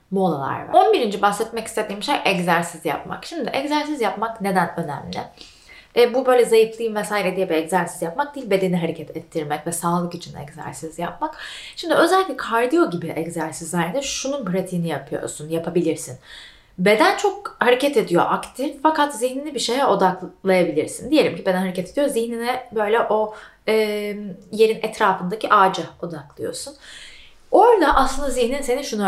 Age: 30-49